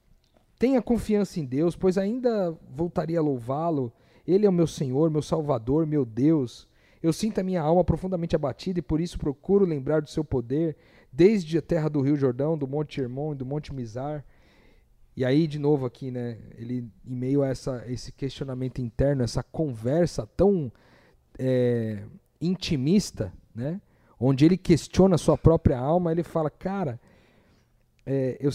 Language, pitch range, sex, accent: Portuguese, 125-160 Hz, male, Brazilian